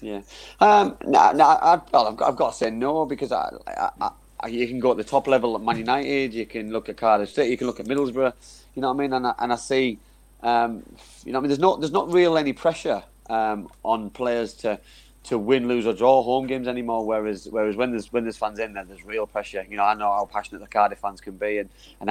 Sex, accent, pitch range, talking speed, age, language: male, British, 105-125 Hz, 270 wpm, 30-49, English